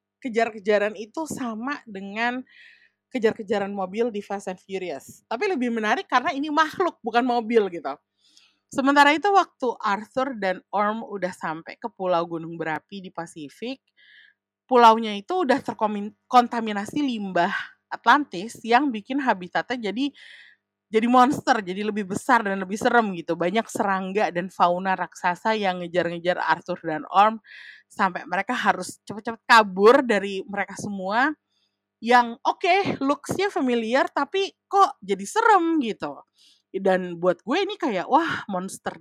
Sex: female